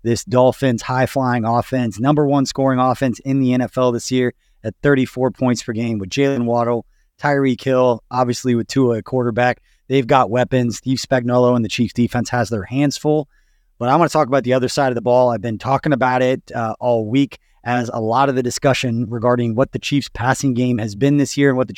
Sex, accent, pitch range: male, American, 120-140 Hz